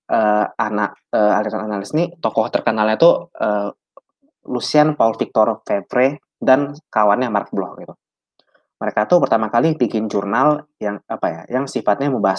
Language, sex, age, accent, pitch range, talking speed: Indonesian, male, 20-39, native, 105-135 Hz, 150 wpm